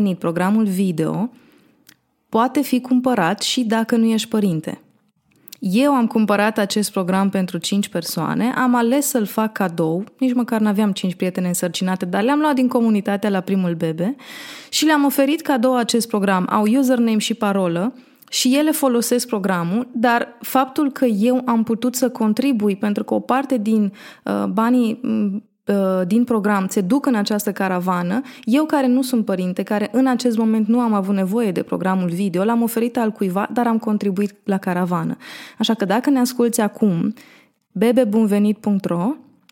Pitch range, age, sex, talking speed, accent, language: 200-250 Hz, 20-39, female, 160 wpm, native, Romanian